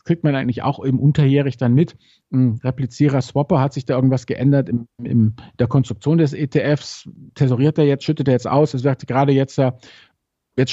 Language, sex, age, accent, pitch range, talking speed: German, male, 50-69, German, 125-155 Hz, 185 wpm